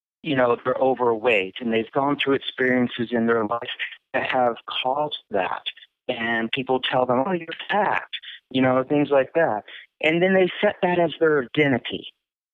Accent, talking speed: American, 170 wpm